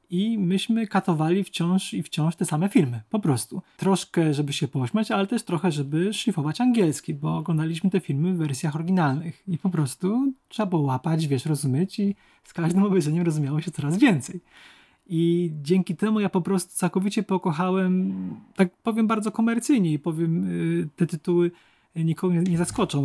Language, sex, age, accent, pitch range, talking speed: Polish, male, 20-39, native, 155-190 Hz, 165 wpm